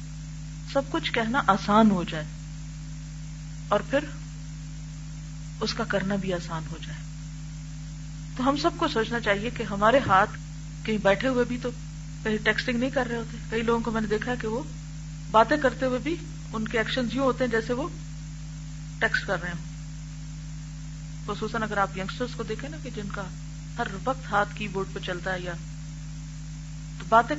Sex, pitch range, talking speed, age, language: female, 155-210 Hz, 175 wpm, 40-59, Urdu